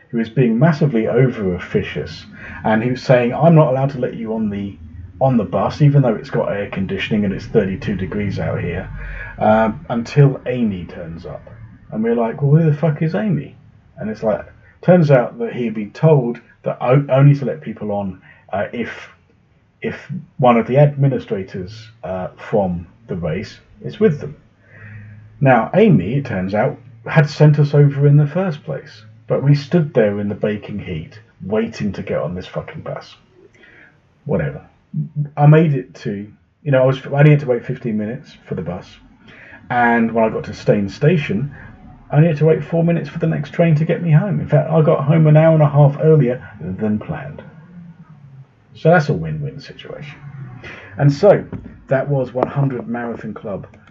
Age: 40-59